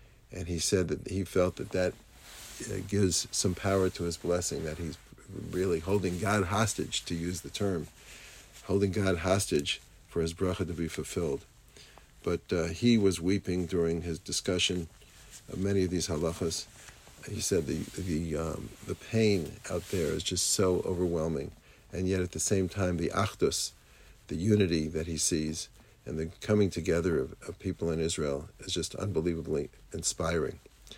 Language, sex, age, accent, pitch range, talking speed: English, male, 50-69, American, 85-100 Hz, 170 wpm